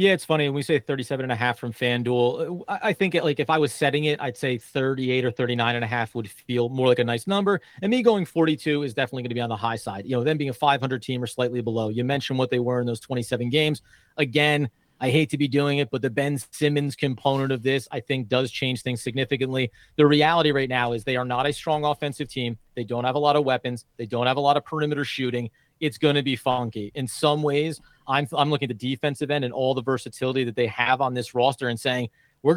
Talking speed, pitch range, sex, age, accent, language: 265 wpm, 125-150 Hz, male, 40-59, American, English